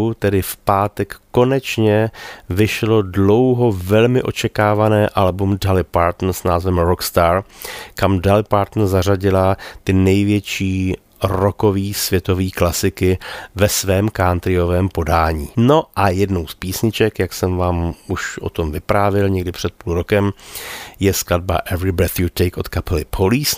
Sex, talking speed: male, 130 wpm